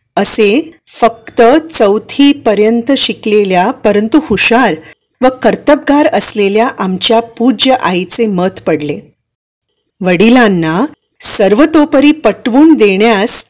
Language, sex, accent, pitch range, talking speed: Marathi, female, native, 185-250 Hz, 85 wpm